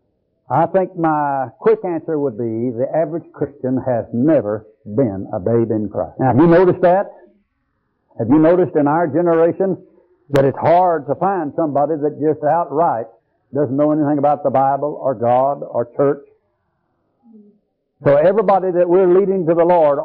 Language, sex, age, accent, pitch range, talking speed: English, male, 60-79, American, 140-170 Hz, 165 wpm